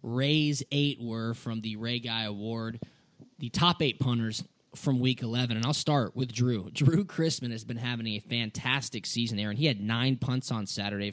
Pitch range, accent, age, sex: 115-140 Hz, American, 10-29, male